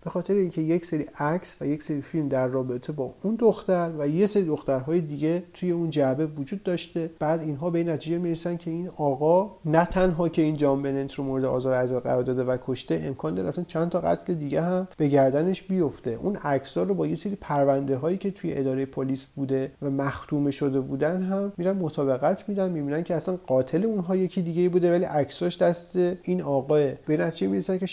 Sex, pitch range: male, 140-185 Hz